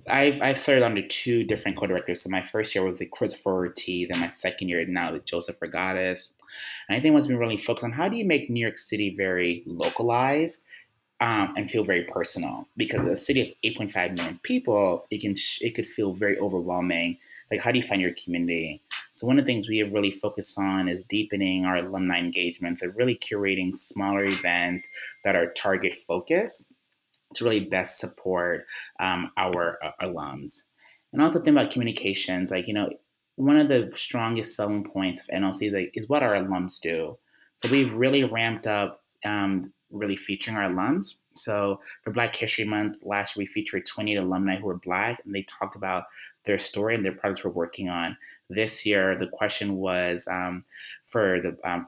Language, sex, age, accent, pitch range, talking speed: English, male, 20-39, American, 90-110 Hz, 190 wpm